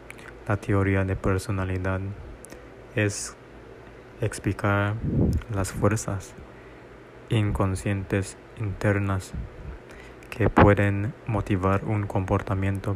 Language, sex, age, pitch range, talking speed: Spanish, male, 20-39, 95-105 Hz, 70 wpm